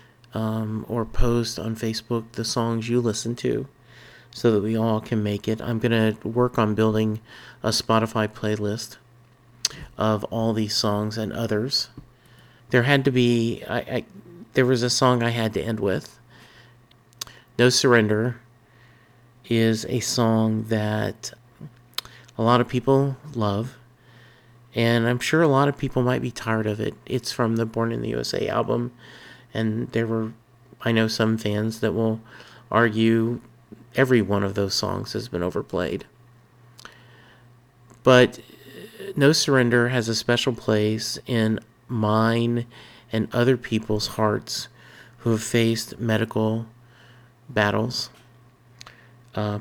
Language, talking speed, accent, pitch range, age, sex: English, 140 wpm, American, 110-125 Hz, 40-59, male